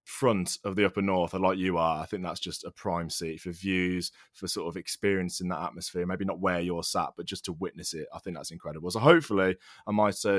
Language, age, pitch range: English, 20-39, 95-110 Hz